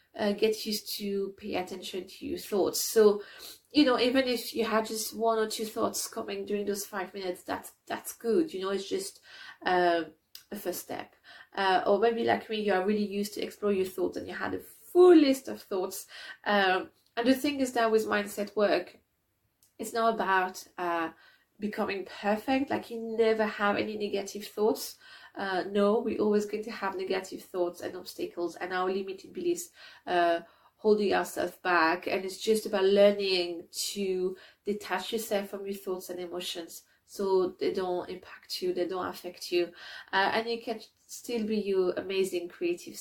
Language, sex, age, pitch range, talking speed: English, female, 30-49, 190-230 Hz, 180 wpm